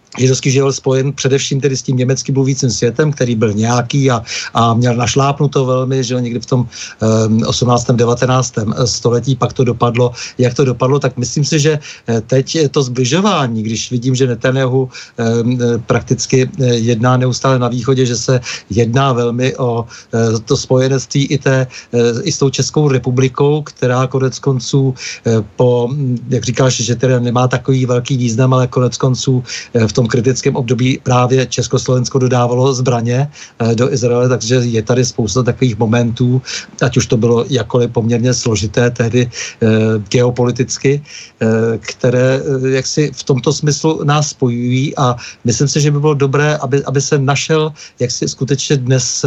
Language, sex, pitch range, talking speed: Czech, male, 120-135 Hz, 155 wpm